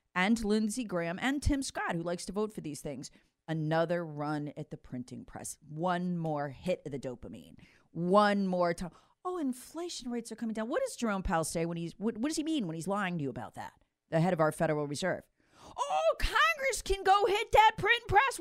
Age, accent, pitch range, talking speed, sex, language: 40-59, American, 170-275 Hz, 220 wpm, female, English